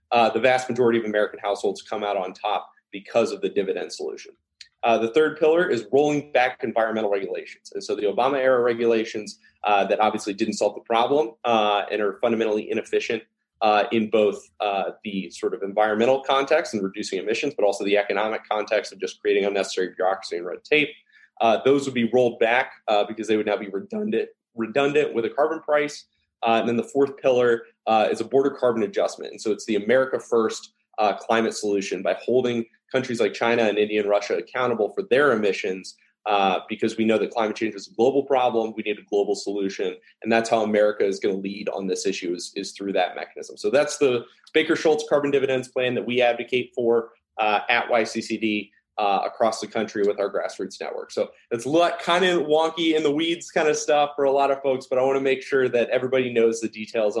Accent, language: American, English